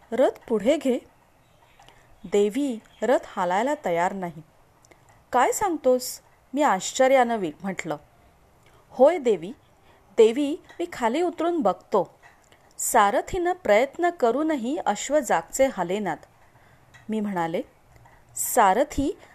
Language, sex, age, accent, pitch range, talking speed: Marathi, female, 30-49, native, 190-295 Hz, 95 wpm